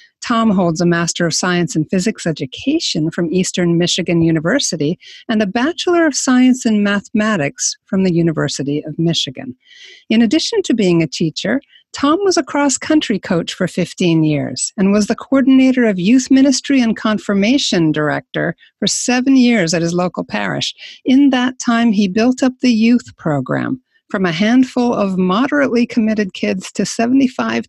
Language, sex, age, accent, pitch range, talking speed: English, female, 50-69, American, 175-245 Hz, 165 wpm